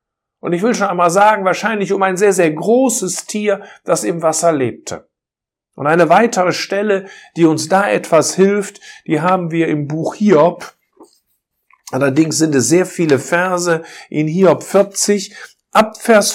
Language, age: German, 50-69